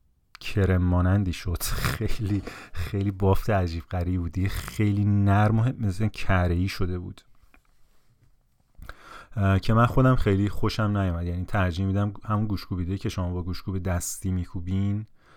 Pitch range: 90-115 Hz